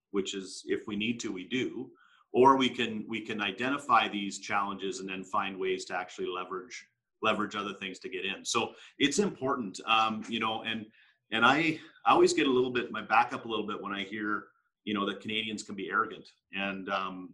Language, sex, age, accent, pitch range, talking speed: English, male, 40-59, American, 100-135 Hz, 215 wpm